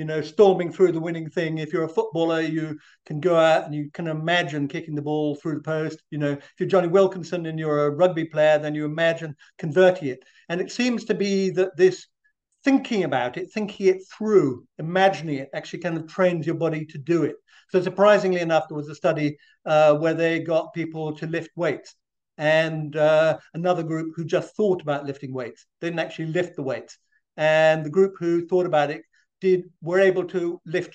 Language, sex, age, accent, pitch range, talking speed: English, male, 50-69, British, 155-190 Hz, 205 wpm